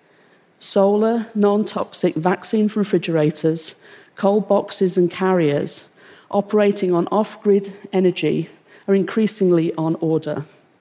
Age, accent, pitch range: 50-69, British, 180-225 Hz